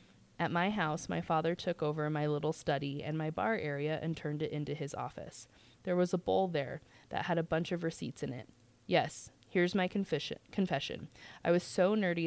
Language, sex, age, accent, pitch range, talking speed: English, female, 20-39, American, 150-180 Hz, 200 wpm